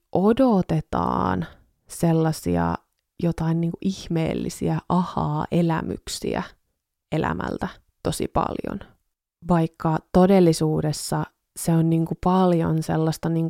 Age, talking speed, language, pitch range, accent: 20-39, 85 wpm, Finnish, 155-180 Hz, native